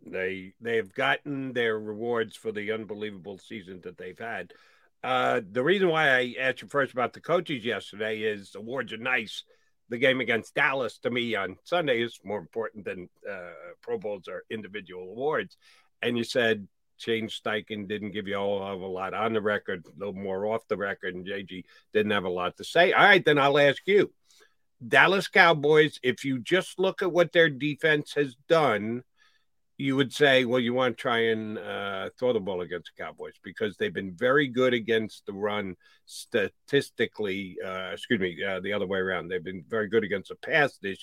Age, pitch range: 50-69, 105-160 Hz